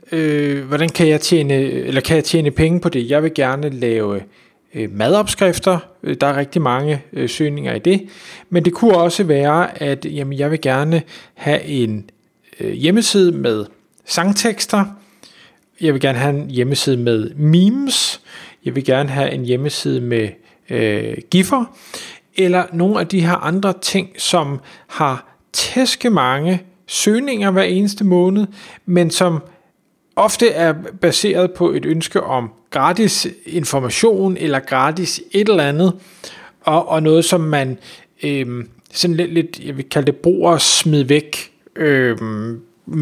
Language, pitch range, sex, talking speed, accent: Danish, 135-180 Hz, male, 135 wpm, native